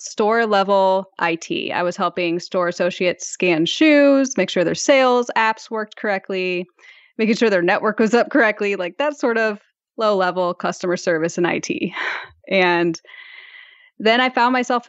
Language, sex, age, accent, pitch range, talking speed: English, female, 10-29, American, 180-235 Hz, 155 wpm